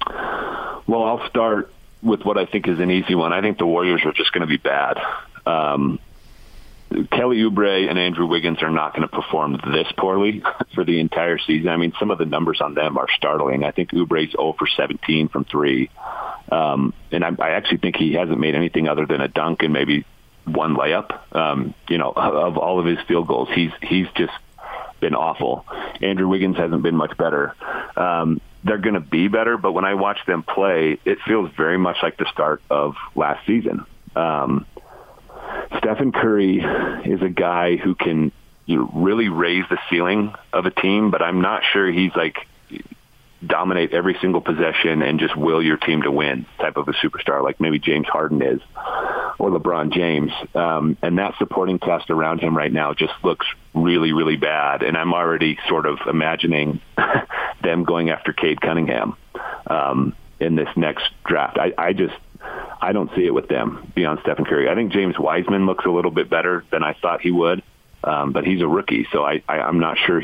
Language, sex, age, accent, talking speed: English, male, 40-59, American, 195 wpm